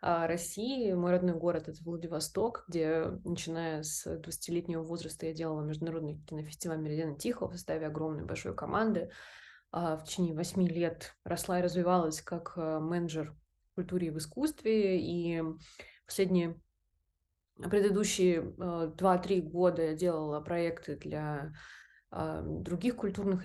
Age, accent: 20-39, native